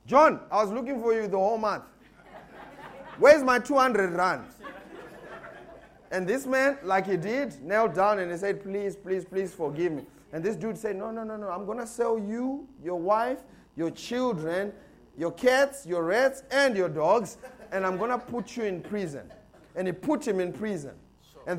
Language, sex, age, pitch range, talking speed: English, male, 30-49, 175-240 Hz, 190 wpm